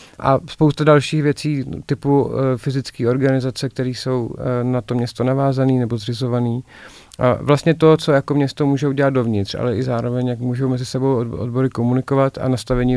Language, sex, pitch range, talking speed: Czech, male, 125-135 Hz, 175 wpm